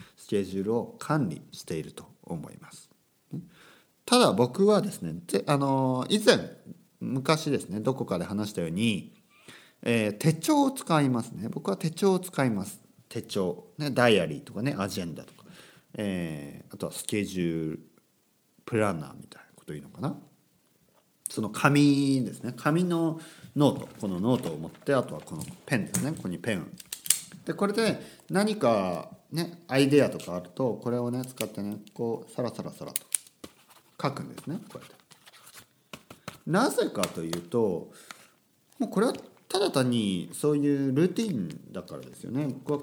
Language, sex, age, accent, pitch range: Japanese, male, 50-69, native, 110-155 Hz